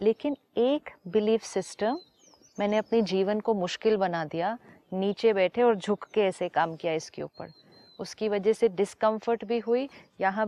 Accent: native